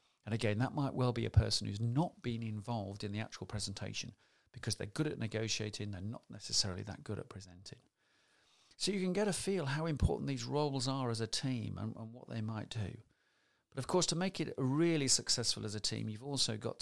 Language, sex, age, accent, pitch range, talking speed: English, male, 40-59, British, 110-140 Hz, 220 wpm